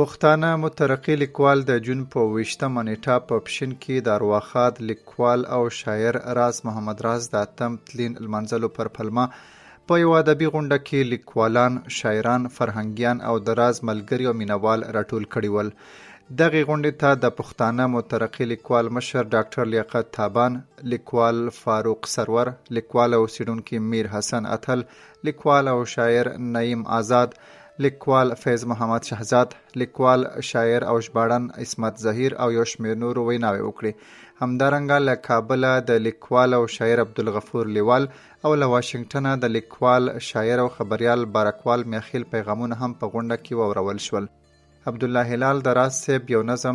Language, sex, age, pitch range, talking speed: Urdu, male, 30-49, 115-125 Hz, 145 wpm